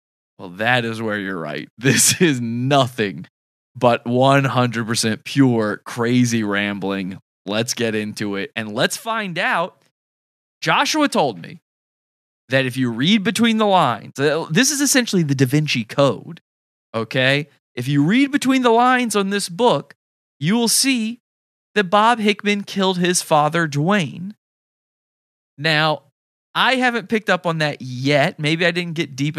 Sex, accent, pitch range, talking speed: male, American, 120-170 Hz, 145 wpm